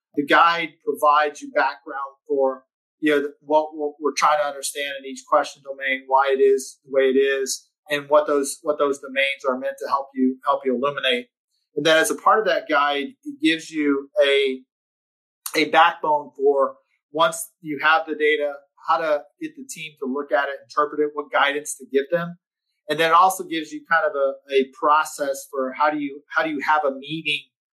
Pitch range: 135-160 Hz